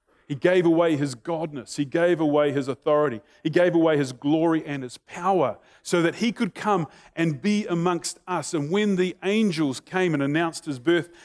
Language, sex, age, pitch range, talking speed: English, male, 30-49, 125-165 Hz, 190 wpm